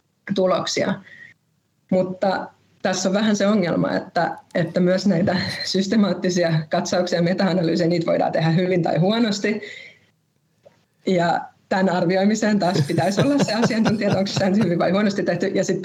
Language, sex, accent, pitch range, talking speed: Finnish, female, native, 175-200 Hz, 140 wpm